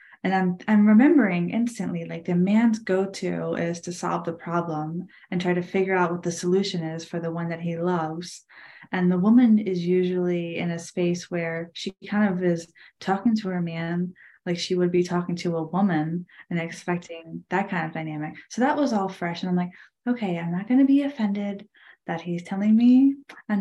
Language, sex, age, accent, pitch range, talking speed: English, female, 10-29, American, 175-220 Hz, 205 wpm